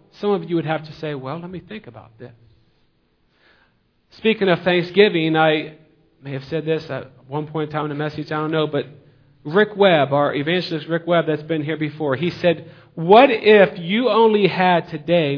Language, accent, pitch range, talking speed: English, American, 140-190 Hz, 200 wpm